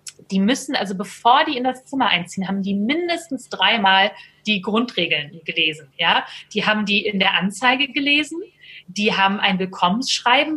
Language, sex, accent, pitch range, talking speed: German, female, German, 195-255 Hz, 155 wpm